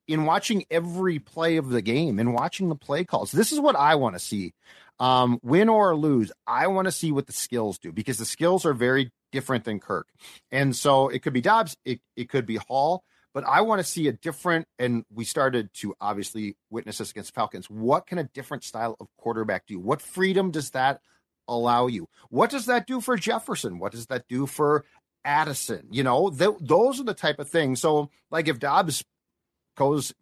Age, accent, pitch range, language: 40-59, American, 115-160 Hz, English